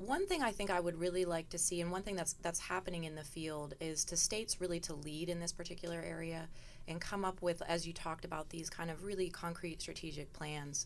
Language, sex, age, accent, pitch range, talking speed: English, female, 20-39, American, 145-175 Hz, 245 wpm